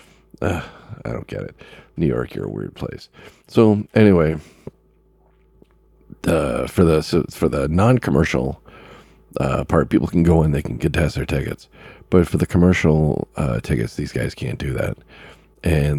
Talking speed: 160 wpm